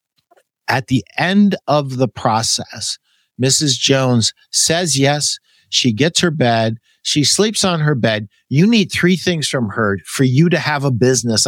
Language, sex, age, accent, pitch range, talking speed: English, male, 50-69, American, 120-155 Hz, 160 wpm